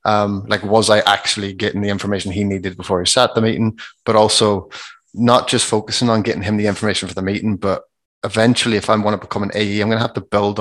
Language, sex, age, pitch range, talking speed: English, male, 20-39, 100-110 Hz, 245 wpm